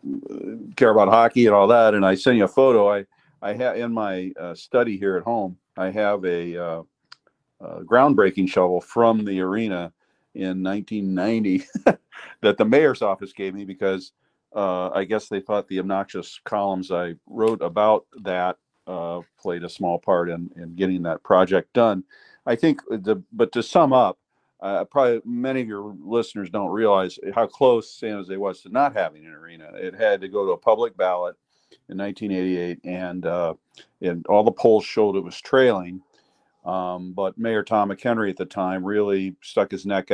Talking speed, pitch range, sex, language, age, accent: 180 wpm, 90-110 Hz, male, English, 50-69, American